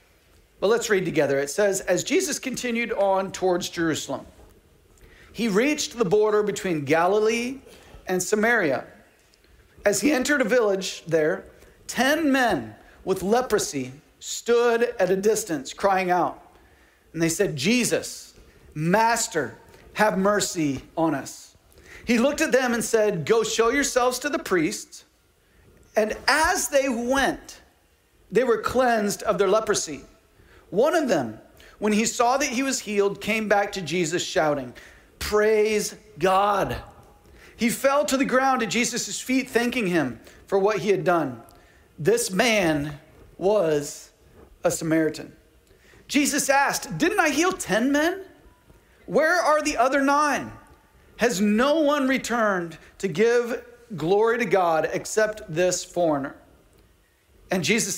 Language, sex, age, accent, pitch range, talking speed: English, male, 40-59, American, 180-245 Hz, 135 wpm